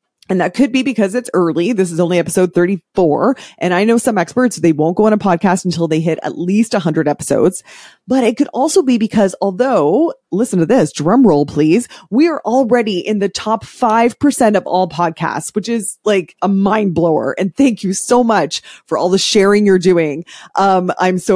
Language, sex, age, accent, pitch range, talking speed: English, female, 20-39, American, 180-245 Hz, 210 wpm